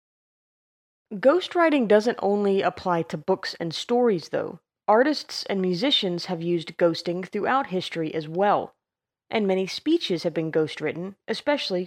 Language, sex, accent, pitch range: English, female, American, 180-235 Hz